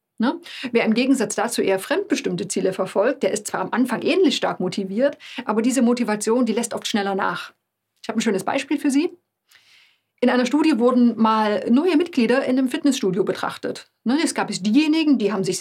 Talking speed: 185 wpm